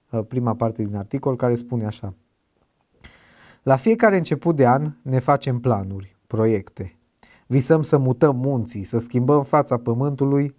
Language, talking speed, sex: Romanian, 135 wpm, male